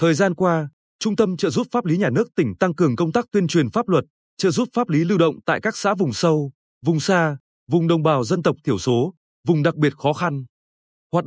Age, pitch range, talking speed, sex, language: 20-39, 150-200 Hz, 245 wpm, male, Vietnamese